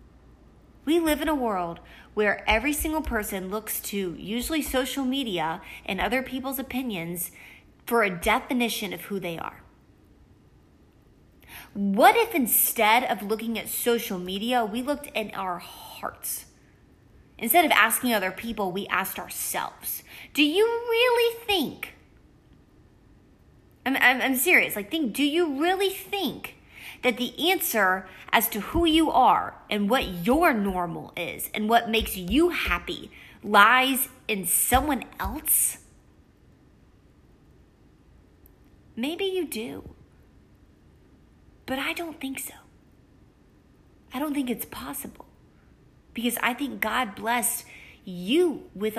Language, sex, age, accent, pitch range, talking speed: English, female, 20-39, American, 200-290 Hz, 125 wpm